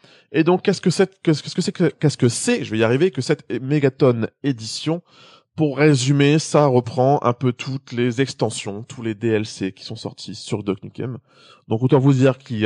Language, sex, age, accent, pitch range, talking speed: French, male, 20-39, French, 110-145 Hz, 225 wpm